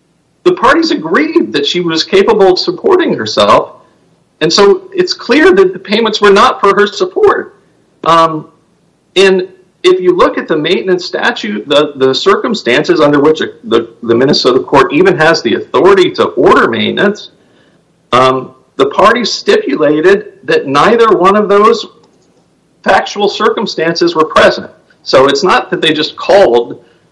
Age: 50-69